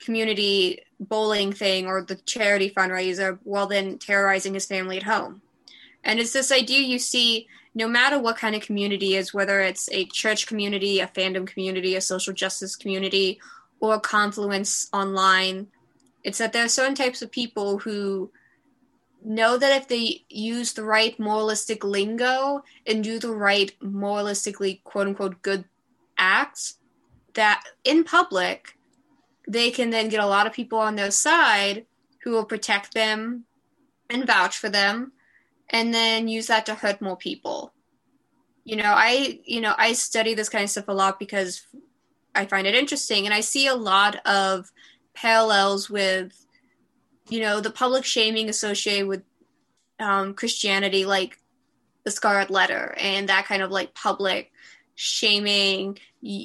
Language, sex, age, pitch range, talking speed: English, female, 20-39, 195-230 Hz, 155 wpm